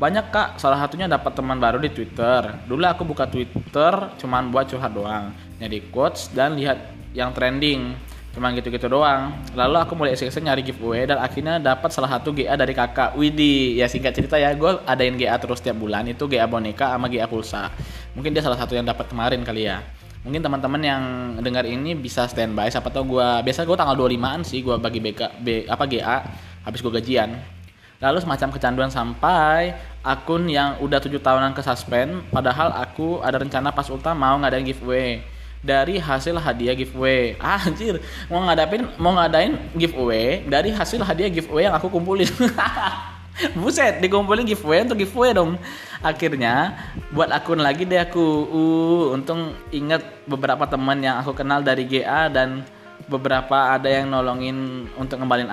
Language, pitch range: Indonesian, 120-150 Hz